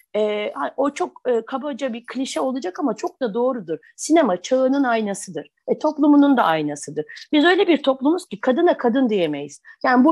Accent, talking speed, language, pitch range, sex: native, 170 wpm, Turkish, 220-315 Hz, female